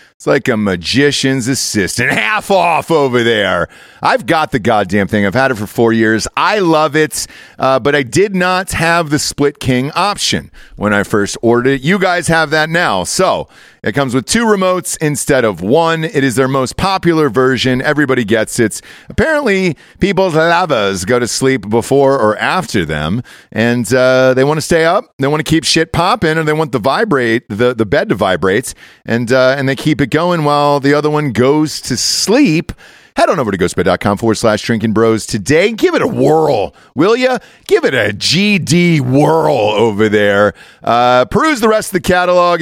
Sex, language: male, English